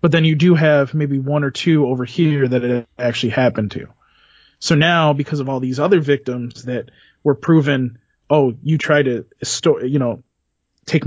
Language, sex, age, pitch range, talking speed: English, male, 20-39, 130-170 Hz, 185 wpm